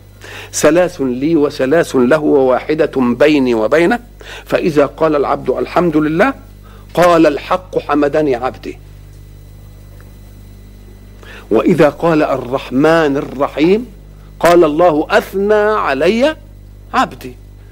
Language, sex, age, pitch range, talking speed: Arabic, male, 50-69, 110-185 Hz, 85 wpm